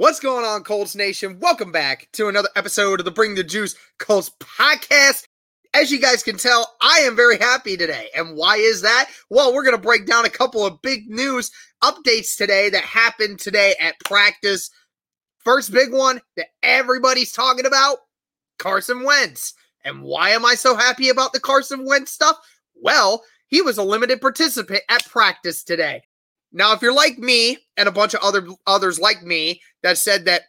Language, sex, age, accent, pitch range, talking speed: English, male, 20-39, American, 200-260 Hz, 185 wpm